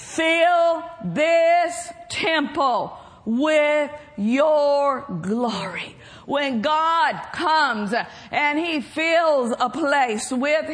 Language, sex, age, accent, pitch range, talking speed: English, female, 50-69, American, 275-335 Hz, 85 wpm